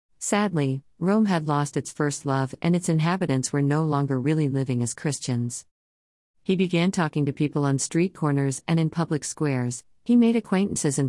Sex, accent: female, American